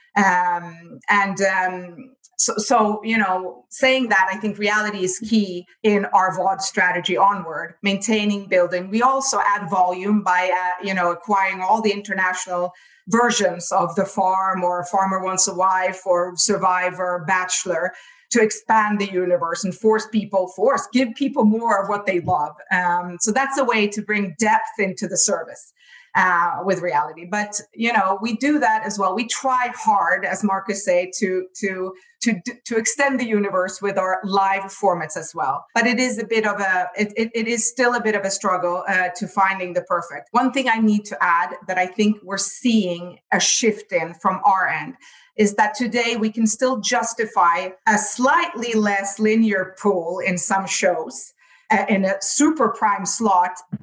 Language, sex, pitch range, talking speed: English, female, 185-225 Hz, 175 wpm